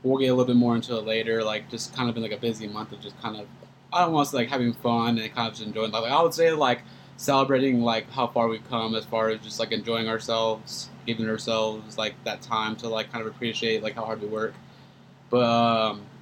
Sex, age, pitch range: male, 20-39, 110-120 Hz